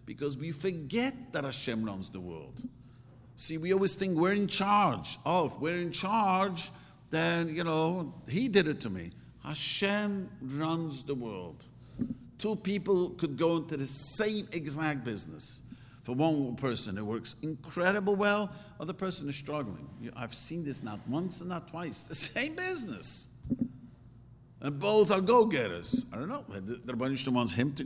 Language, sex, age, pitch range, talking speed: English, male, 50-69, 125-175 Hz, 160 wpm